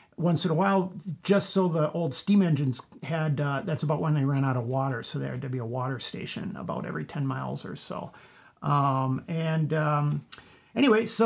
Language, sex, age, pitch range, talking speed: English, male, 50-69, 150-180 Hz, 210 wpm